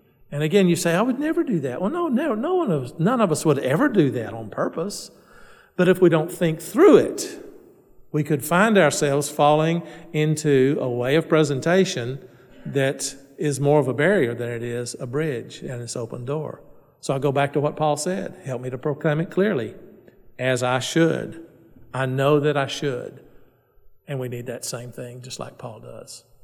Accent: American